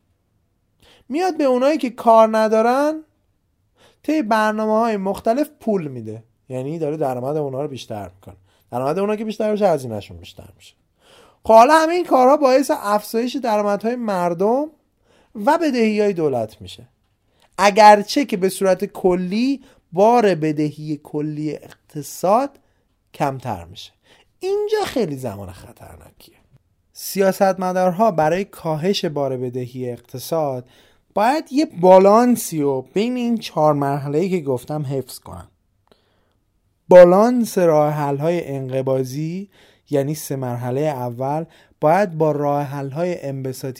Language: Persian